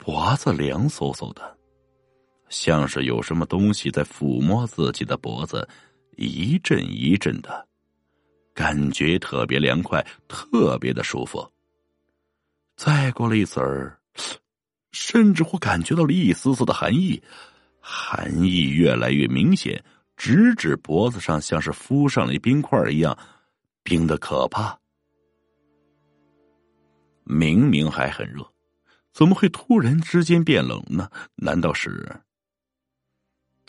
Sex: male